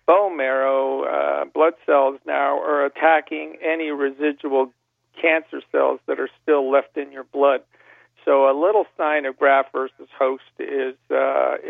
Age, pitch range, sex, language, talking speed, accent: 50-69, 135-150 Hz, male, English, 150 wpm, American